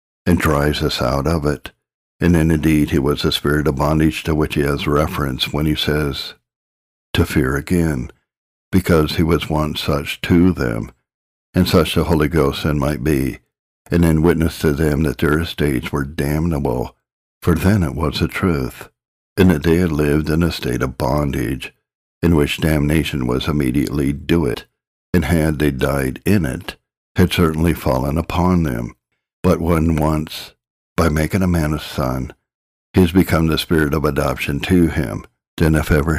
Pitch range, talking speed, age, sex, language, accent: 70-85 Hz, 175 wpm, 60-79, male, English, American